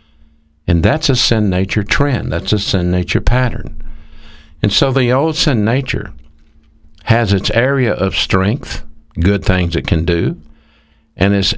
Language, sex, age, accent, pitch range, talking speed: English, male, 60-79, American, 80-110 Hz, 150 wpm